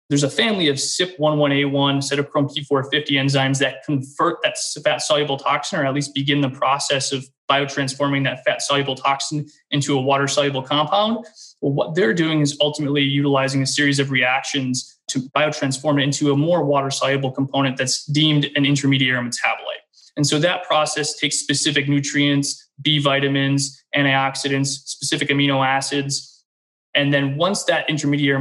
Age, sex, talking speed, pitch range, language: 20-39, male, 150 wpm, 140-150 Hz, English